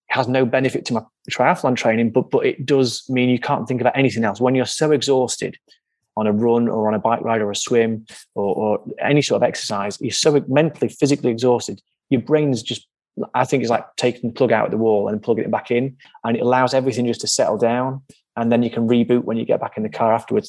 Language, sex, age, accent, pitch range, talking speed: English, male, 30-49, British, 115-145 Hz, 245 wpm